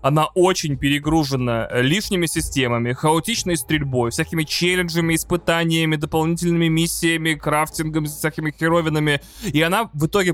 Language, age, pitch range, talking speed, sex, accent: Russian, 20-39, 140-180 Hz, 110 wpm, male, native